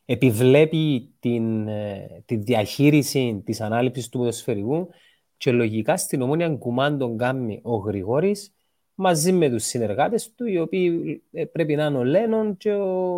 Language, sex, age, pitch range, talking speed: Greek, male, 30-49, 115-160 Hz, 145 wpm